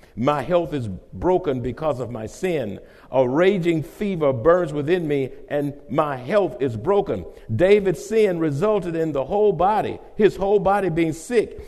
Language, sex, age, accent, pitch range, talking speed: English, male, 50-69, American, 160-205 Hz, 160 wpm